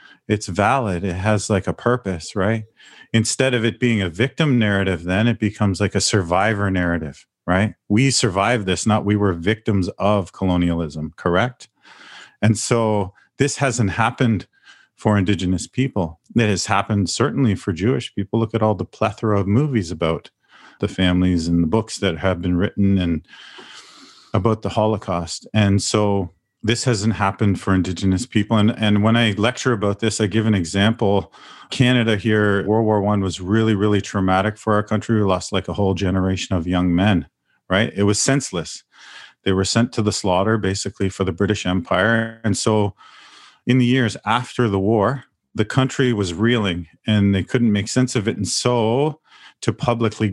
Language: English